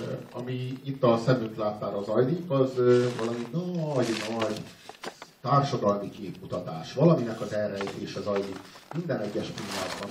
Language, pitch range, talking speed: Hungarian, 110-150 Hz, 125 wpm